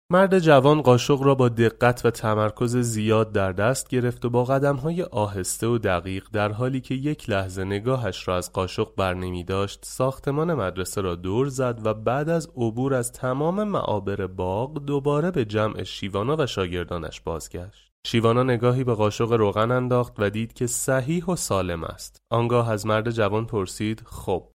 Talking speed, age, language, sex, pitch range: 165 wpm, 30-49, Persian, male, 100-140 Hz